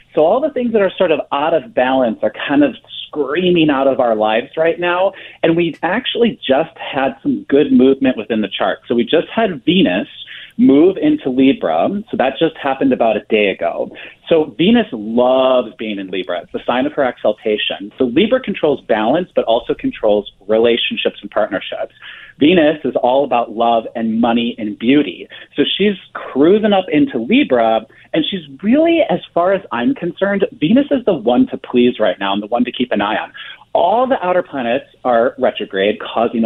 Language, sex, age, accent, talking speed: English, male, 40-59, American, 190 wpm